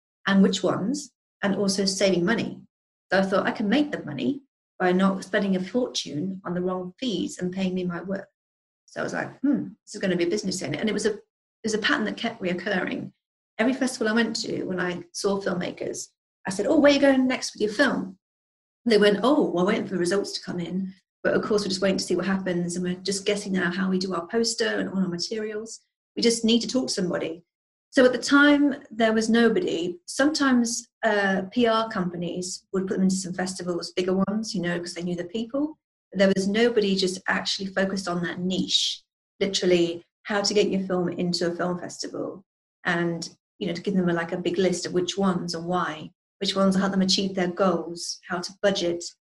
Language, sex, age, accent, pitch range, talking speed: English, female, 40-59, British, 180-220 Hz, 230 wpm